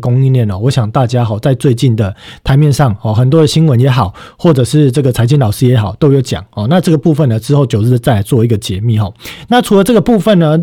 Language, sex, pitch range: Chinese, male, 120-160 Hz